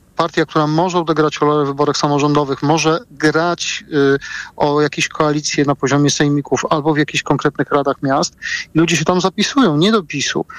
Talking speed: 165 wpm